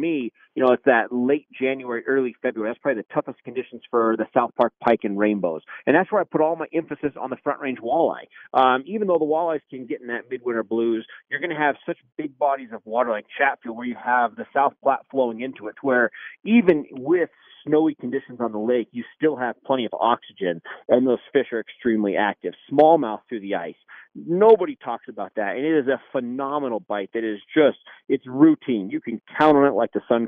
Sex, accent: male, American